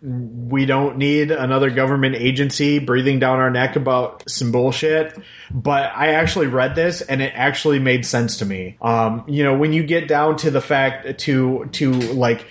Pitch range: 120-150 Hz